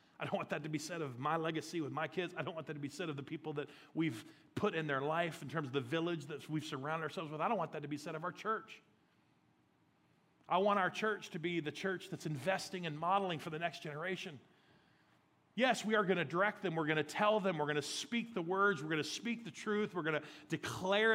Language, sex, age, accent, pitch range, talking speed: English, male, 40-59, American, 160-195 Hz, 265 wpm